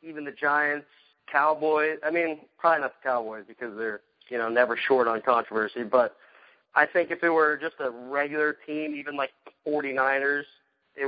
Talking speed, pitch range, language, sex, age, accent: 170 wpm, 120-150 Hz, English, male, 30-49, American